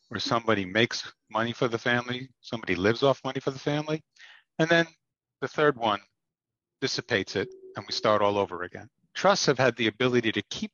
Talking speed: 190 wpm